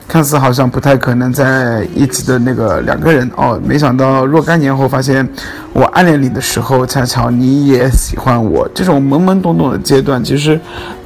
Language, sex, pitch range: Chinese, male, 135-160 Hz